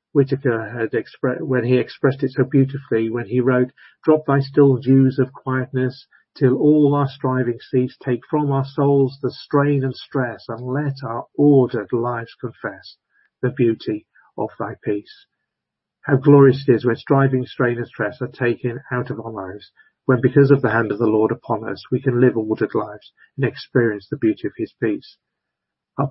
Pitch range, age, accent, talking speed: 120-140 Hz, 50-69, British, 185 wpm